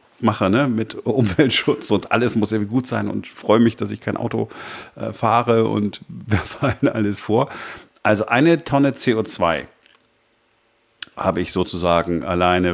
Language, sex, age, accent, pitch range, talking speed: German, male, 40-59, German, 90-115 Hz, 150 wpm